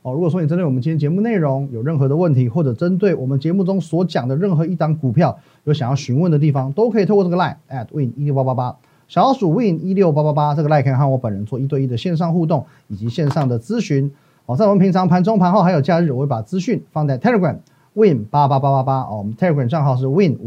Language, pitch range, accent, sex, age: Chinese, 135-185 Hz, native, male, 30-49